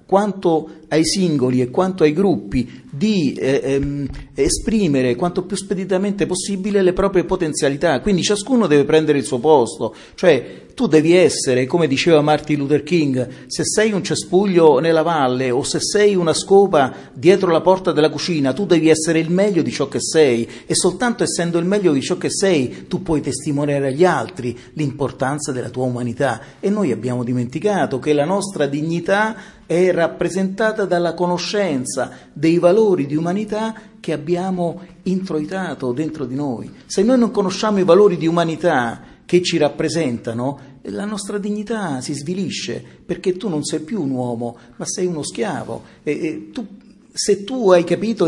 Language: Italian